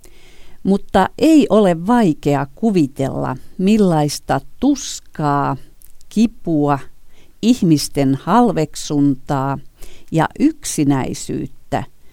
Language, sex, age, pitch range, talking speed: Finnish, female, 50-69, 145-190 Hz, 60 wpm